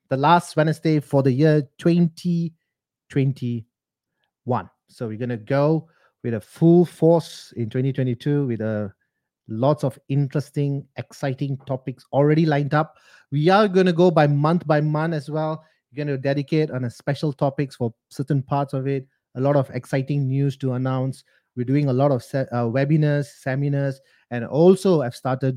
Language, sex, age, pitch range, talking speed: English, male, 30-49, 130-155 Hz, 165 wpm